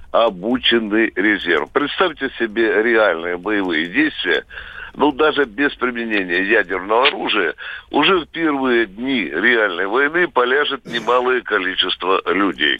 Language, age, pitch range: Russian, 60-79, 120-180 Hz